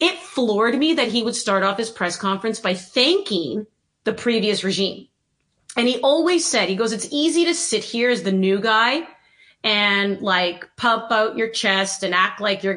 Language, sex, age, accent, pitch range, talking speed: English, female, 30-49, American, 195-260 Hz, 195 wpm